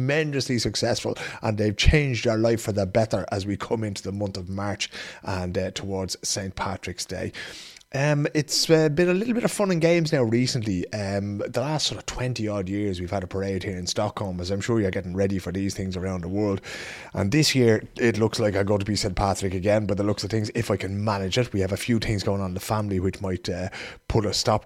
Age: 30-49